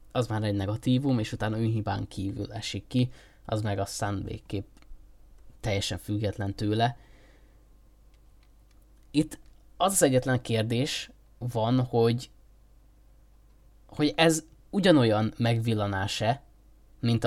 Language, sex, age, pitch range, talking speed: Hungarian, male, 20-39, 105-120 Hz, 100 wpm